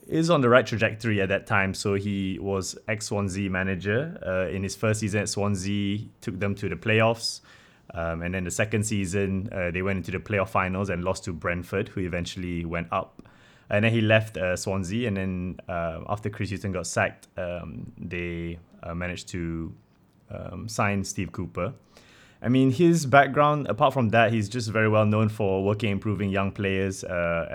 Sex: male